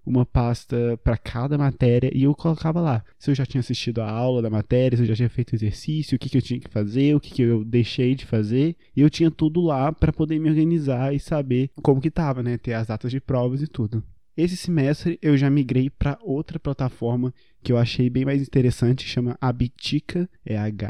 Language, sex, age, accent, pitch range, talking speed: Portuguese, male, 20-39, Brazilian, 120-150 Hz, 220 wpm